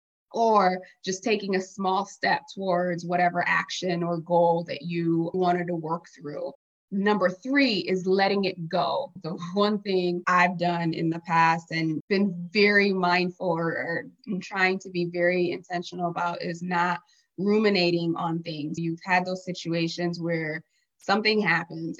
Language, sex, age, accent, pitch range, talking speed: English, female, 20-39, American, 170-195 Hz, 150 wpm